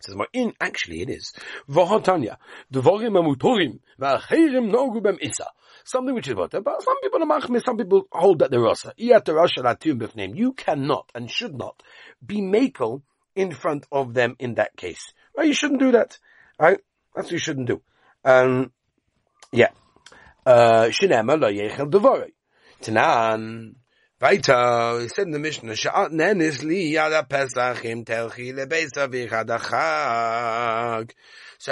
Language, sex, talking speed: English, male, 115 wpm